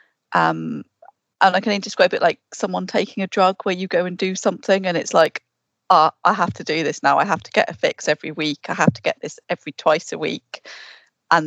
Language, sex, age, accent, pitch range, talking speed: English, female, 40-59, British, 150-180 Hz, 235 wpm